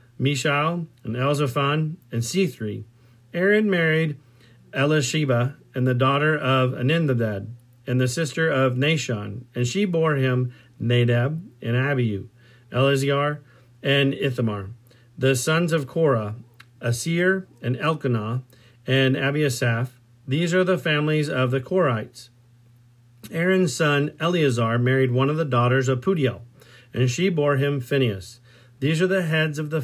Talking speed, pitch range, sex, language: 130 wpm, 120-150 Hz, male, English